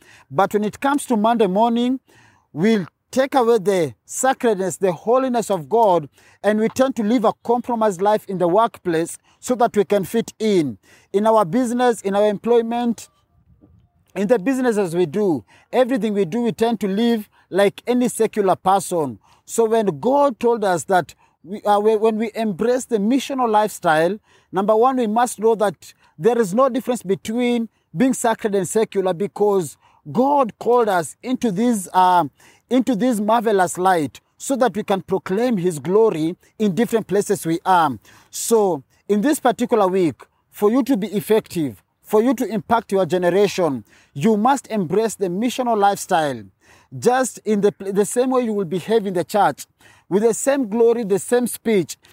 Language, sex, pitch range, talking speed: English, male, 185-235 Hz, 170 wpm